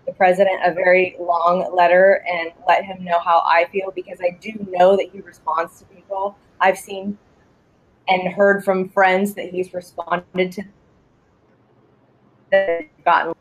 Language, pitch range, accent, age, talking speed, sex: English, 175-200 Hz, American, 20-39, 150 wpm, female